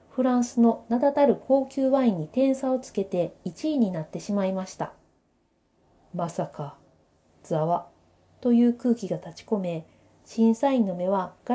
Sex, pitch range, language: female, 190-255 Hz, Japanese